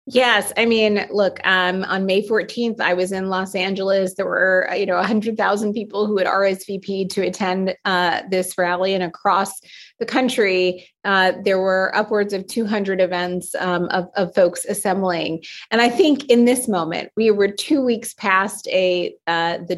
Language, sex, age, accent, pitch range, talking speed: English, female, 30-49, American, 170-200 Hz, 180 wpm